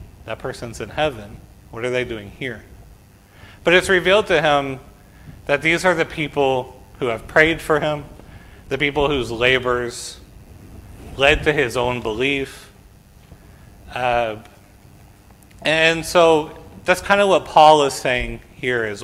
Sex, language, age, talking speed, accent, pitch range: male, English, 40-59, 140 wpm, American, 100-145 Hz